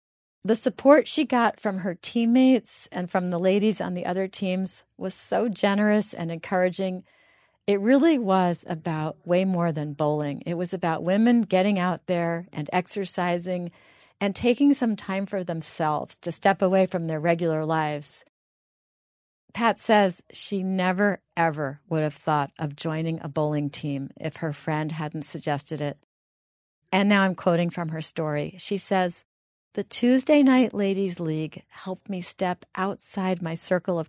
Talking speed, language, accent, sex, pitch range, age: 160 wpm, English, American, female, 160-195 Hz, 40-59